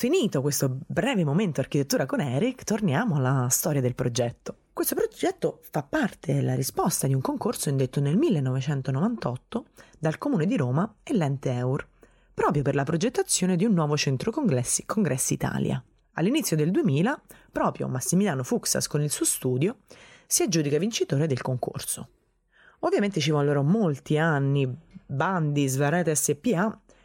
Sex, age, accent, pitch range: female, 30-49, native, 135-185 Hz